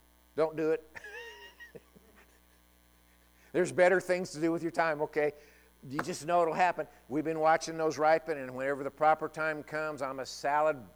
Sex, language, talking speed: male, English, 170 wpm